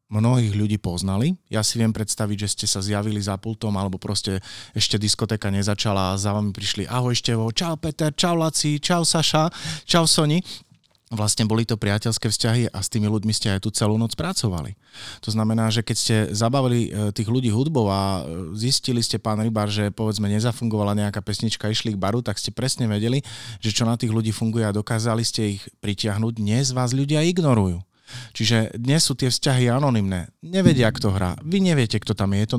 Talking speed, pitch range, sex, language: 190 wpm, 105-125 Hz, male, Slovak